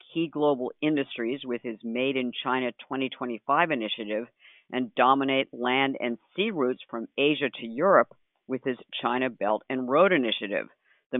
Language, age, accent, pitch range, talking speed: English, 50-69, American, 120-145 Hz, 150 wpm